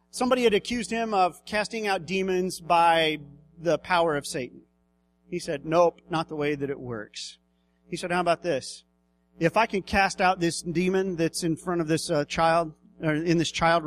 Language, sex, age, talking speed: English, male, 40-59, 195 wpm